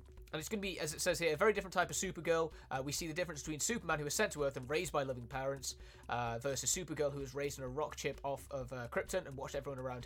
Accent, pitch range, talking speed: British, 120-170 Hz, 300 wpm